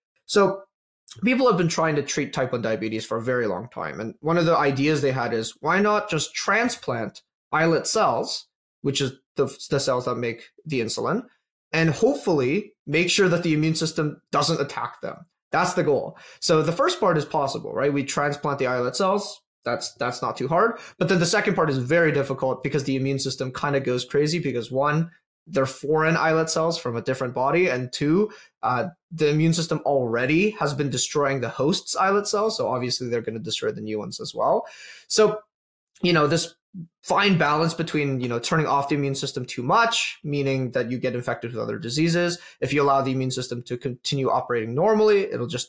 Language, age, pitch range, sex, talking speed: English, 20-39, 130-175 Hz, male, 205 wpm